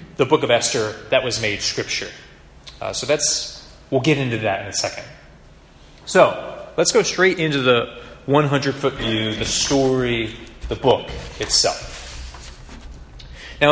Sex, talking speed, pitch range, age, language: male, 140 wpm, 115-150 Hz, 30-49, English